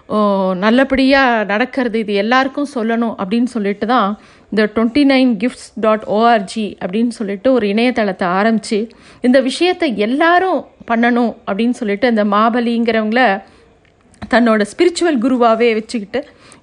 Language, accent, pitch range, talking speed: Tamil, native, 215-265 Hz, 110 wpm